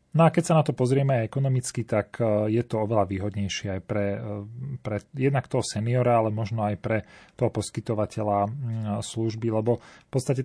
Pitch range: 110-125 Hz